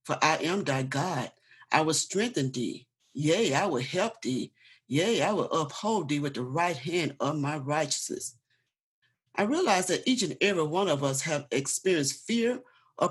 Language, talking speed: English, 180 wpm